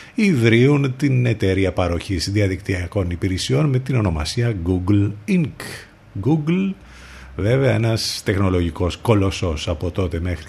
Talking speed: 110 wpm